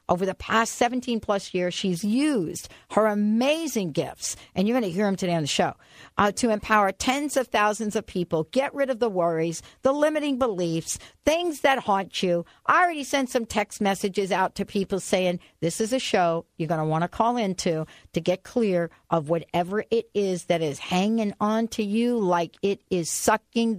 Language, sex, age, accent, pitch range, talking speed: English, female, 60-79, American, 170-225 Hz, 195 wpm